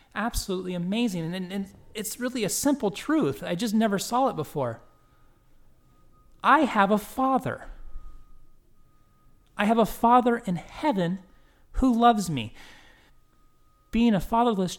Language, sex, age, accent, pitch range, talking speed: English, male, 30-49, American, 140-205 Hz, 125 wpm